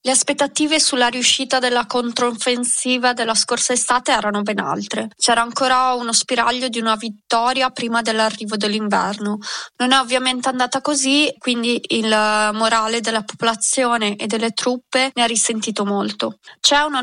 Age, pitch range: 20-39, 220-250 Hz